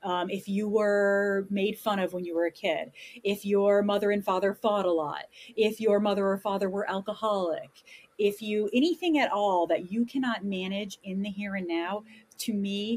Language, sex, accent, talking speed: English, female, American, 200 wpm